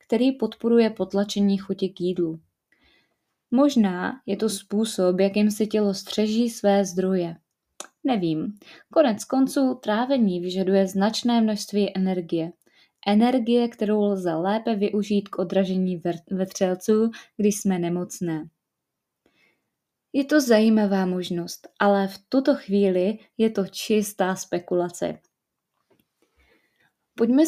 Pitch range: 190-230 Hz